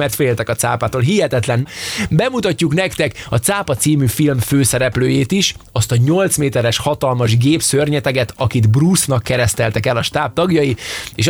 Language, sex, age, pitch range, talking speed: Hungarian, male, 20-39, 115-145 Hz, 150 wpm